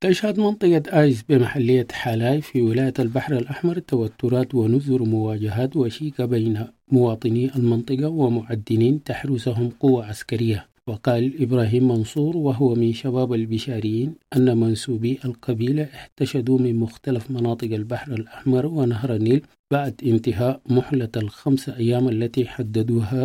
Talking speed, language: 115 wpm, English